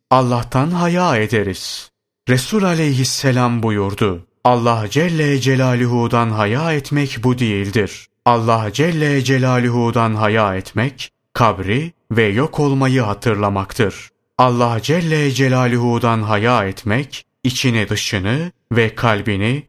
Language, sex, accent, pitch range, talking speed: Turkish, male, native, 110-135 Hz, 100 wpm